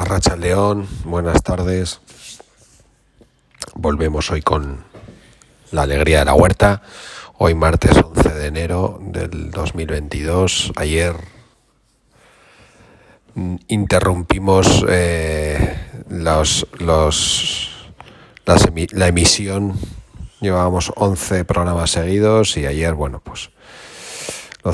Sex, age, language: male, 40-59, Spanish